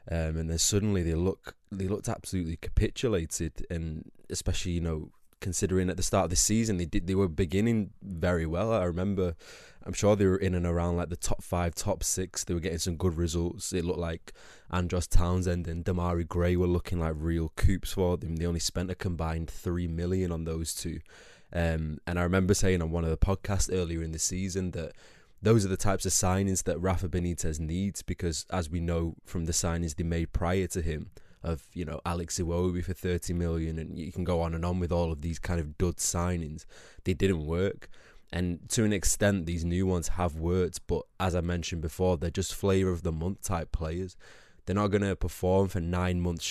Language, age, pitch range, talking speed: English, 20-39, 85-95 Hz, 215 wpm